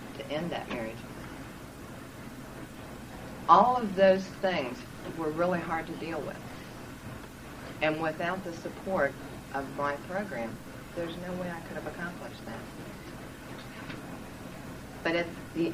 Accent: American